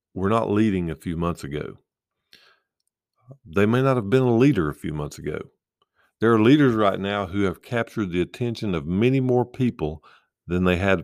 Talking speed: 190 wpm